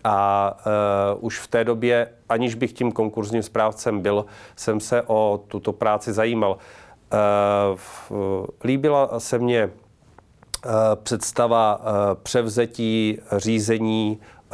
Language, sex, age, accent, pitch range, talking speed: Czech, male, 40-59, native, 100-115 Hz, 95 wpm